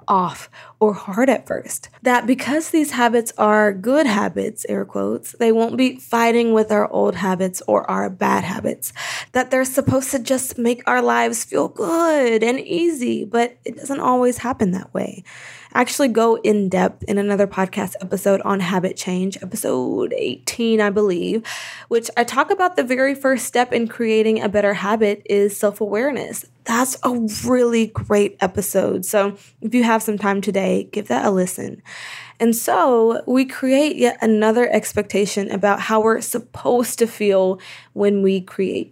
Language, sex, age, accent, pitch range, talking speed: English, female, 20-39, American, 195-245 Hz, 165 wpm